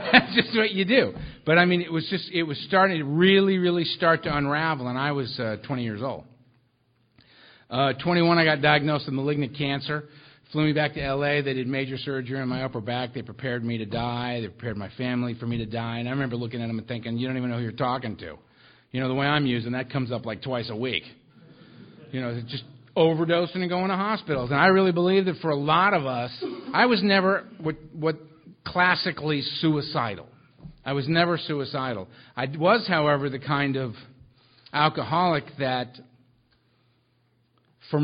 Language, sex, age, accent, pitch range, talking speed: English, male, 50-69, American, 125-155 Hz, 200 wpm